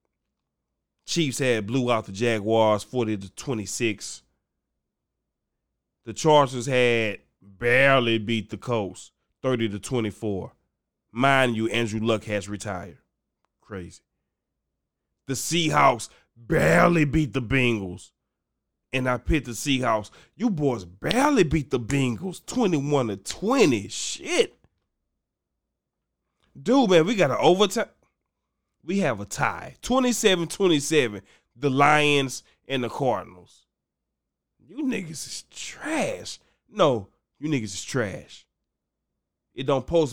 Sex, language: male, English